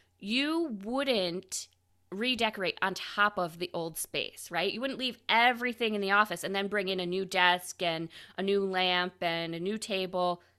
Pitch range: 185-240 Hz